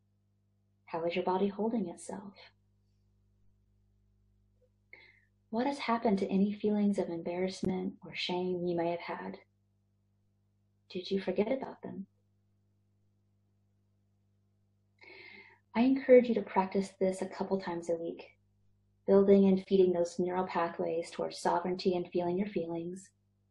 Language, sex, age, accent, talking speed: English, female, 30-49, American, 125 wpm